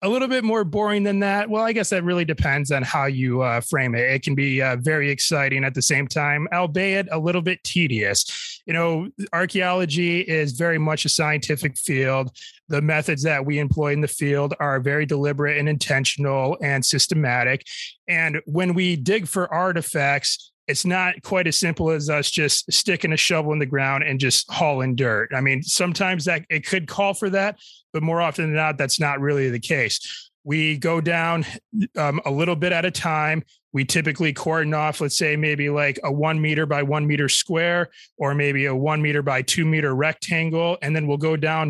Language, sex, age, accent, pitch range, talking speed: English, male, 30-49, American, 140-170 Hz, 200 wpm